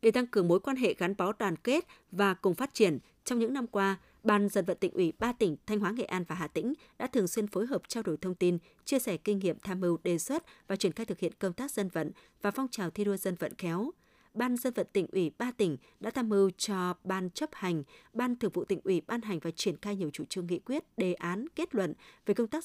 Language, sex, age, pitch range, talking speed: Vietnamese, female, 20-39, 180-230 Hz, 270 wpm